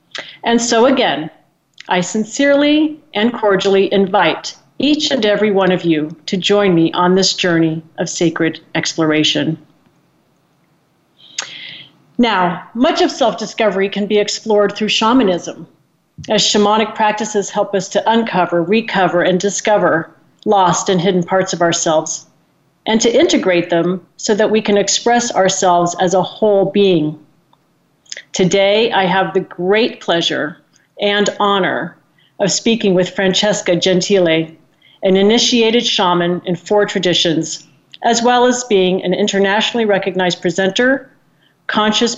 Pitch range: 180-220 Hz